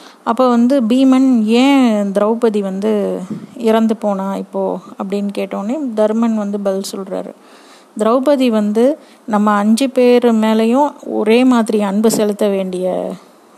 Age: 30-49